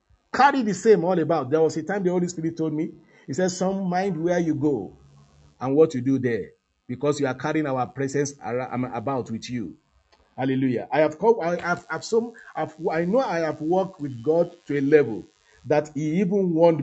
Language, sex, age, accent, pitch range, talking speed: English, male, 50-69, Nigerian, 160-220 Hz, 205 wpm